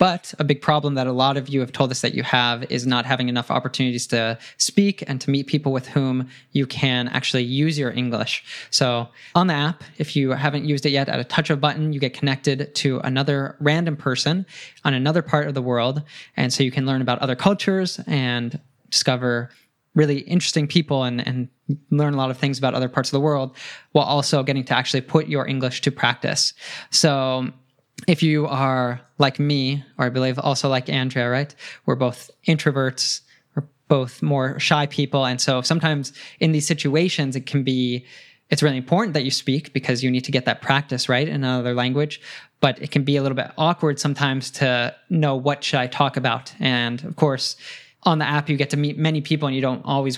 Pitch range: 130-150 Hz